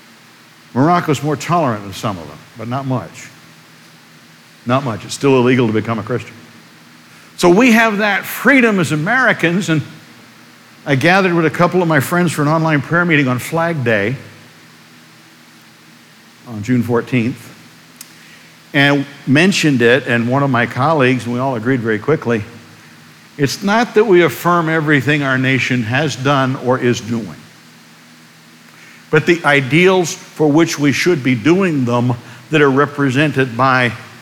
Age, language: 60-79, English